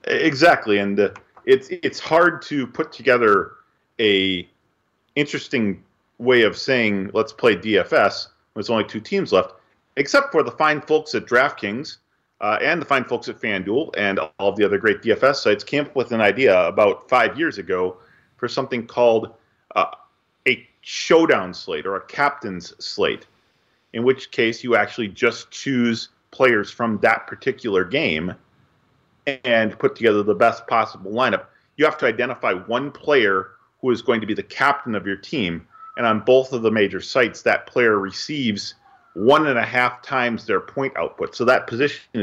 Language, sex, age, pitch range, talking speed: English, male, 40-59, 110-150 Hz, 170 wpm